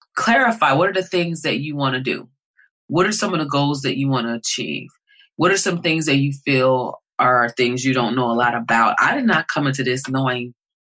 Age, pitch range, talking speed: 20-39, 130-160 Hz, 235 wpm